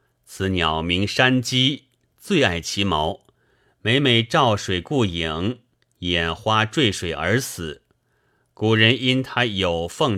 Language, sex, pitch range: Chinese, male, 90-130 Hz